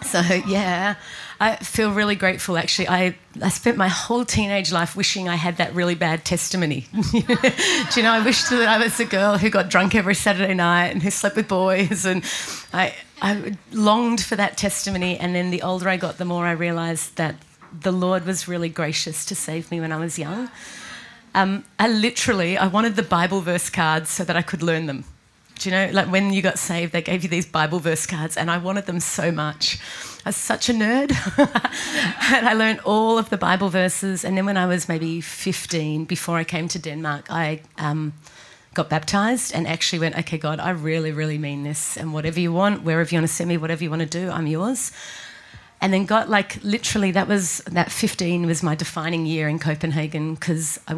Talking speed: 215 wpm